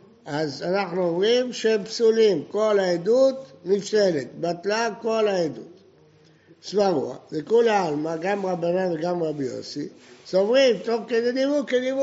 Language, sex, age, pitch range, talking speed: Hebrew, male, 60-79, 160-220 Hz, 110 wpm